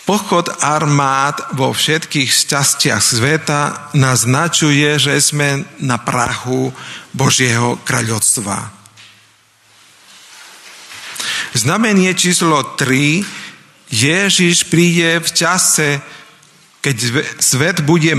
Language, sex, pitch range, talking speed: Slovak, male, 130-155 Hz, 75 wpm